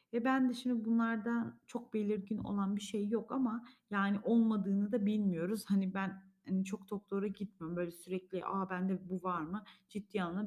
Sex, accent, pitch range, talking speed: female, native, 185-230 Hz, 185 wpm